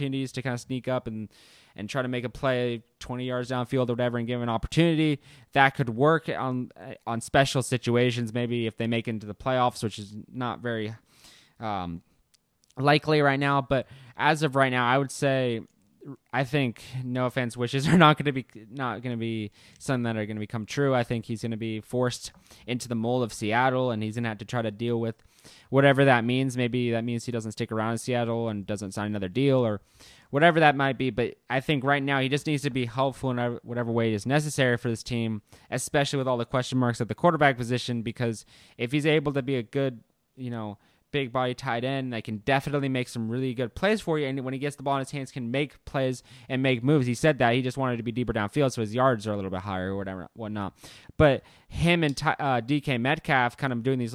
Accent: American